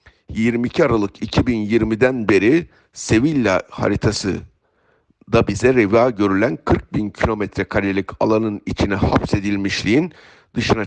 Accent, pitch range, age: native, 95-110 Hz, 50-69